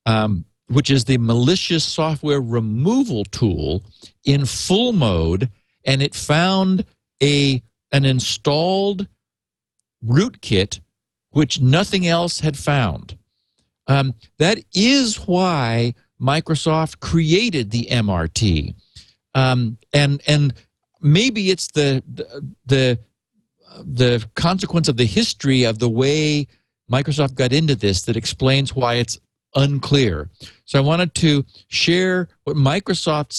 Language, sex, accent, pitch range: English, male, American, 115-155 Hz